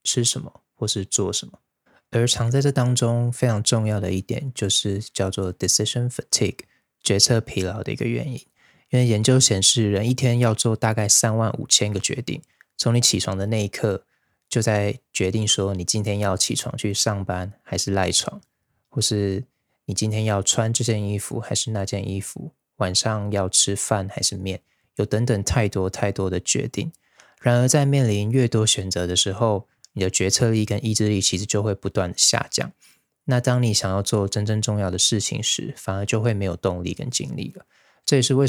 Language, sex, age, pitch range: Chinese, male, 20-39, 100-120 Hz